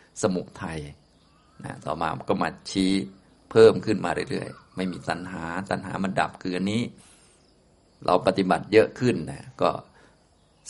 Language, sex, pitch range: Thai, male, 90-105 Hz